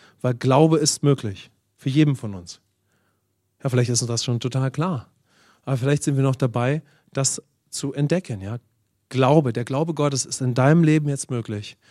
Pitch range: 120-160 Hz